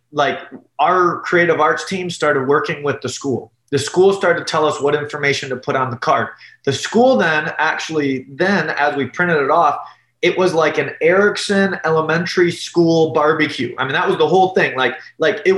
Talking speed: 195 wpm